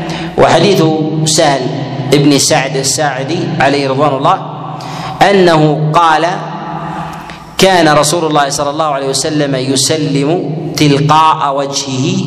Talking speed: 100 wpm